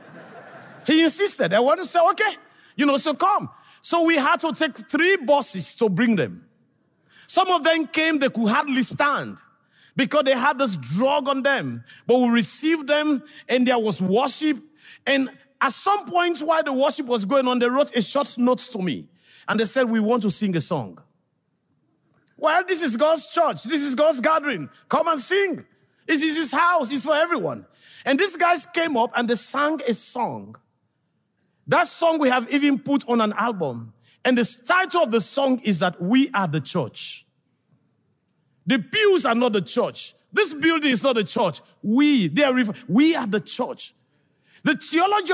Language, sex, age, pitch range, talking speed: English, male, 50-69, 180-305 Hz, 185 wpm